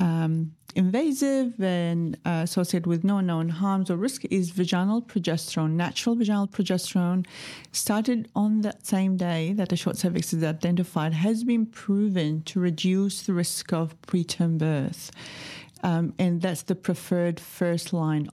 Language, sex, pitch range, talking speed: English, female, 160-205 Hz, 145 wpm